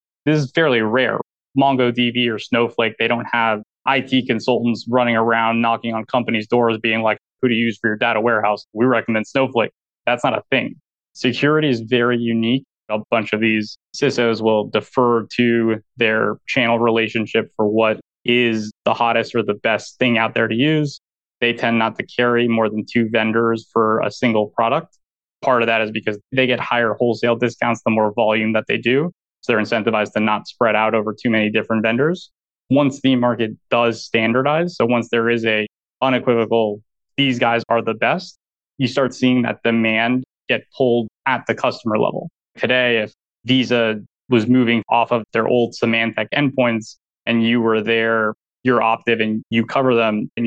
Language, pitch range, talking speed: English, 110-120 Hz, 180 wpm